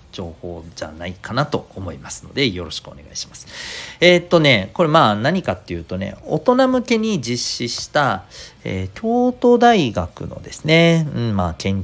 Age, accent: 40-59, native